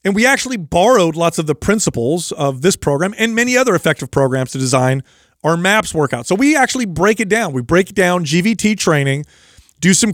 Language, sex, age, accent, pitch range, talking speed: English, male, 30-49, American, 145-195 Hz, 200 wpm